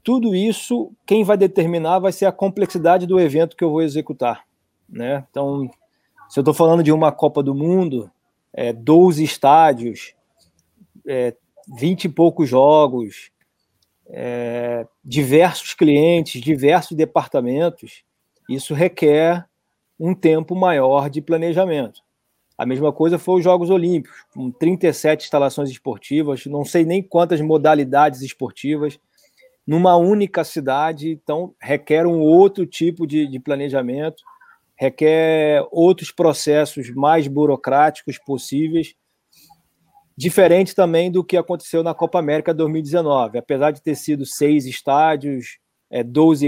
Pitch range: 145-175 Hz